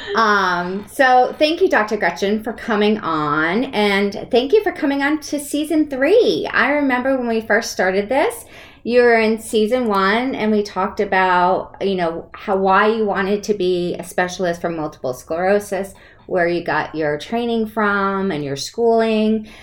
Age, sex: 30-49, female